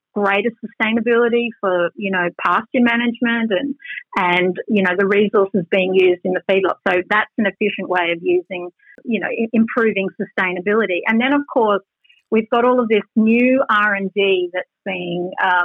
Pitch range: 190-230 Hz